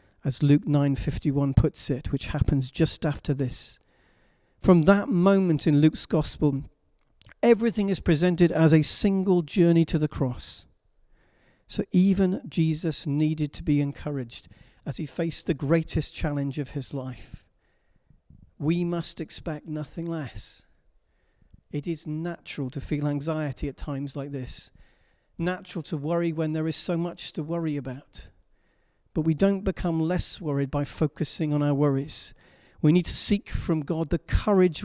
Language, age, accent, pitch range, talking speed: English, 50-69, British, 140-170 Hz, 150 wpm